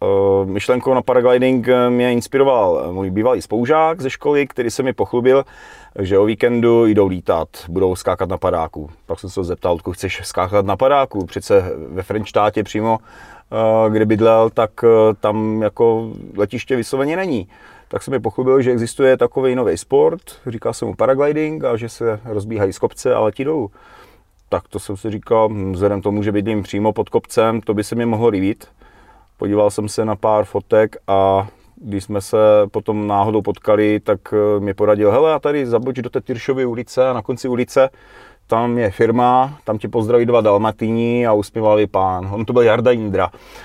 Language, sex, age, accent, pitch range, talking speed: Czech, male, 30-49, native, 105-125 Hz, 175 wpm